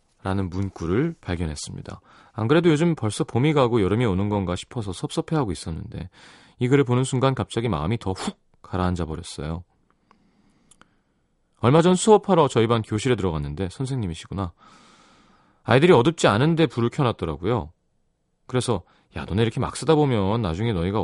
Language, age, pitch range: Korean, 30-49, 95-140 Hz